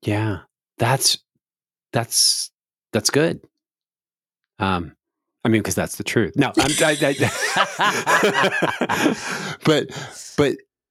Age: 40-59